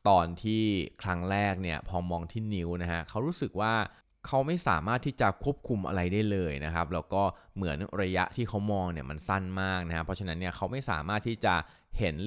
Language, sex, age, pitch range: Thai, male, 20-39, 85-105 Hz